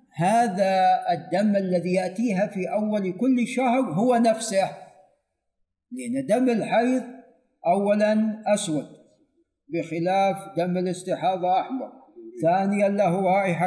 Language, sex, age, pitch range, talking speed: Arabic, male, 50-69, 170-240 Hz, 95 wpm